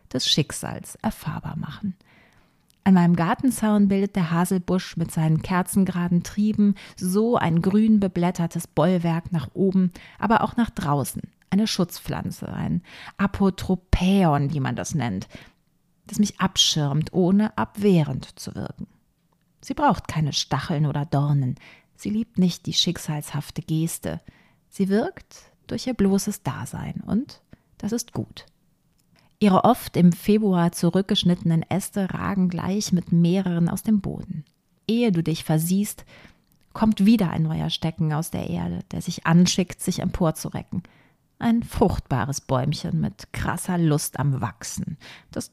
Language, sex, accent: German, female, German